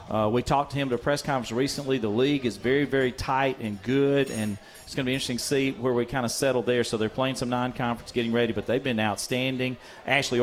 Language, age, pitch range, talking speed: English, 40-59, 120-155 Hz, 255 wpm